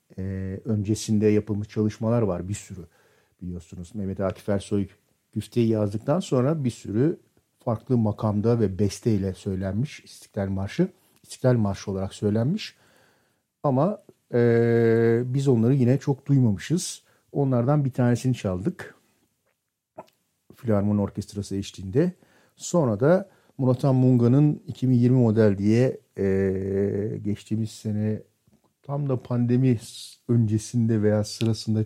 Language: Turkish